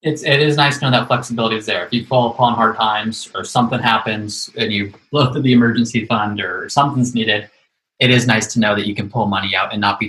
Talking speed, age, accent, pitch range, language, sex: 255 wpm, 20-39, American, 110-130 Hz, English, male